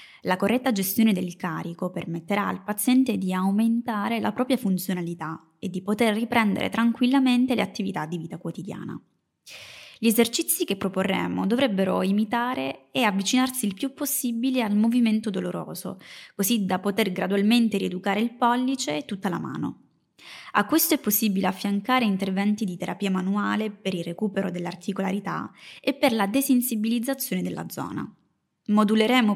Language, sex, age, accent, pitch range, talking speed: Italian, female, 20-39, native, 180-230 Hz, 140 wpm